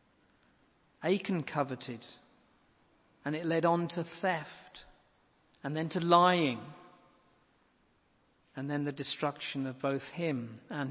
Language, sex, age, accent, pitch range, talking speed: English, male, 50-69, British, 150-230 Hz, 110 wpm